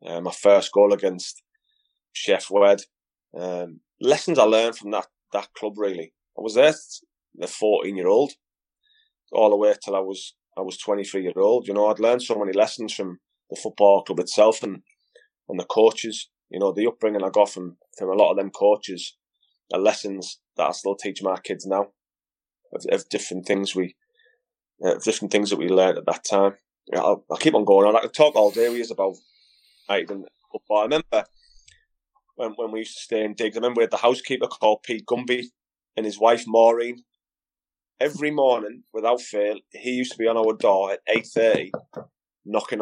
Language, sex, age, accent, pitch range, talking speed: English, male, 20-39, British, 105-155 Hz, 195 wpm